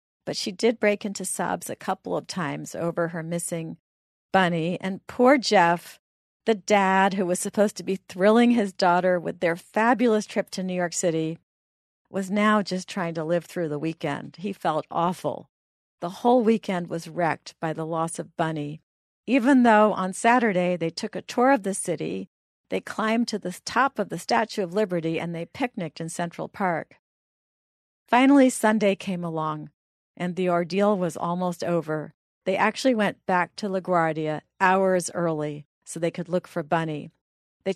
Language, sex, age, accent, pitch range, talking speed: English, female, 50-69, American, 165-205 Hz, 175 wpm